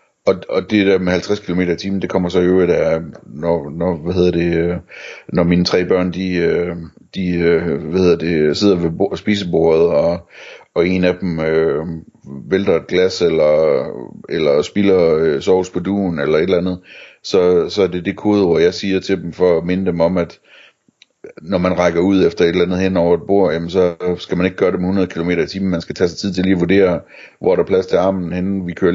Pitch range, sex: 85-100 Hz, male